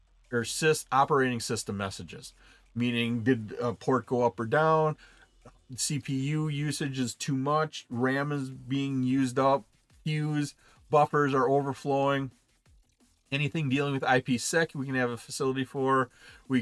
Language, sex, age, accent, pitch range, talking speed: English, male, 30-49, American, 120-145 Hz, 135 wpm